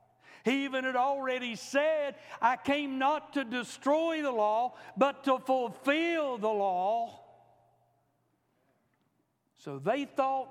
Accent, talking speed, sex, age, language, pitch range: American, 115 wpm, male, 60-79, English, 220-305 Hz